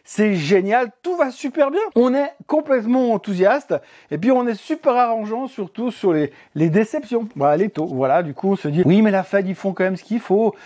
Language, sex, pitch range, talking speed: French, male, 180-255 Hz, 230 wpm